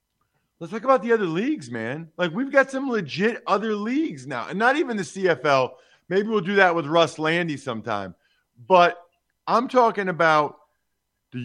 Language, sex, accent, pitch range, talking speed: English, male, American, 155-200 Hz, 175 wpm